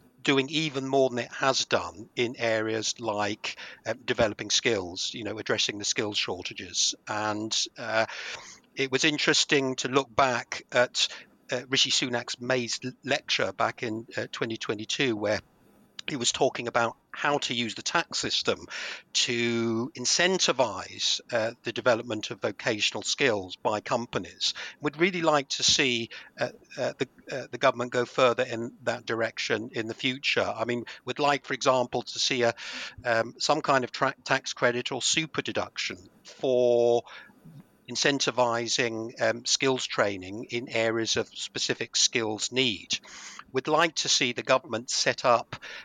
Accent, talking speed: British, 150 wpm